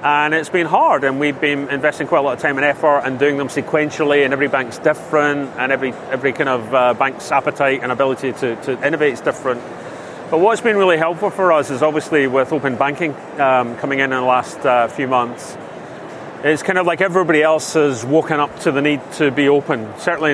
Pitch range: 135-155 Hz